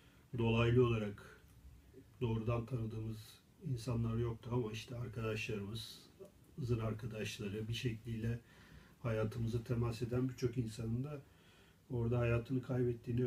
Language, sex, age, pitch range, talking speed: Turkish, male, 40-59, 110-130 Hz, 100 wpm